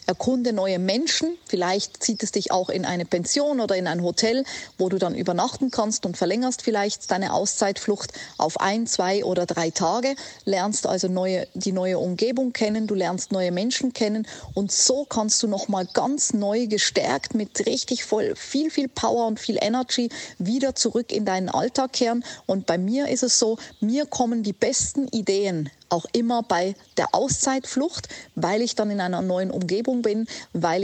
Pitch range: 190-235 Hz